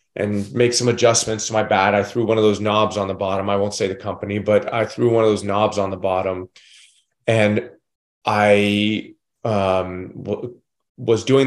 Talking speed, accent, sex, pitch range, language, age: 195 wpm, American, male, 110-130 Hz, English, 30-49